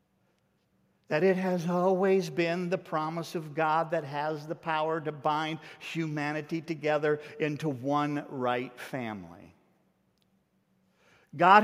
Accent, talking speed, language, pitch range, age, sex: American, 115 wpm, English, 155-195 Hz, 50-69, male